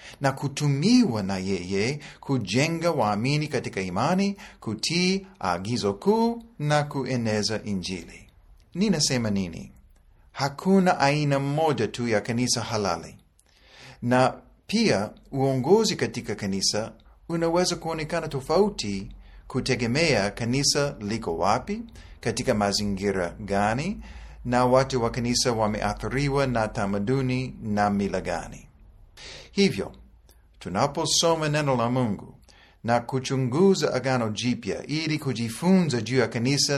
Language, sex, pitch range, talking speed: Swahili, male, 105-155 Hz, 100 wpm